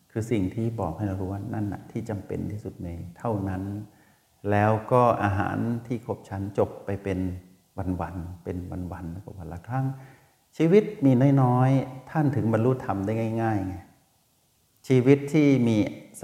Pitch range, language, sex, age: 95-115 Hz, Thai, male, 60-79